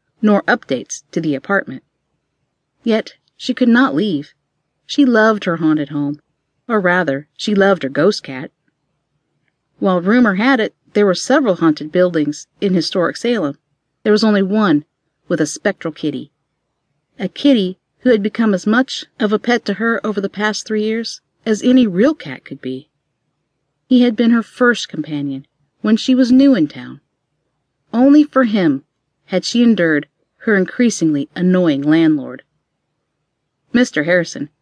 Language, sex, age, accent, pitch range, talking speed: English, female, 50-69, American, 150-220 Hz, 155 wpm